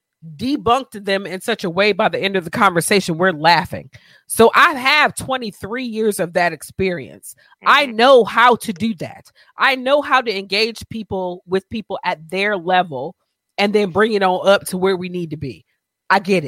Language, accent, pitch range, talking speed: English, American, 185-250 Hz, 195 wpm